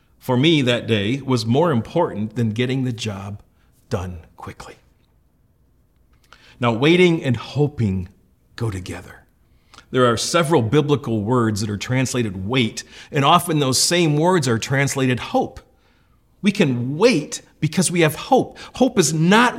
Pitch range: 125-175 Hz